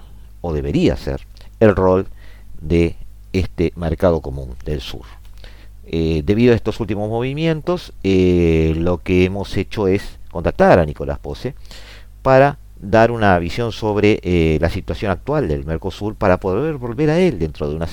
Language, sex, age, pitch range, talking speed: Spanish, male, 50-69, 85-110 Hz, 155 wpm